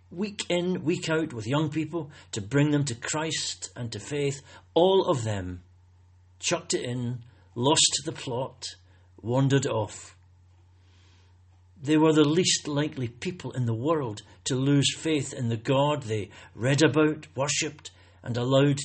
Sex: male